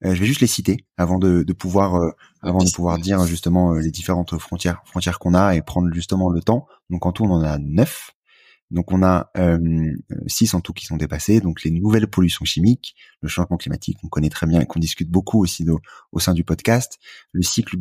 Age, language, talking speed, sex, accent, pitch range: 30-49, French, 235 wpm, male, French, 85-100 Hz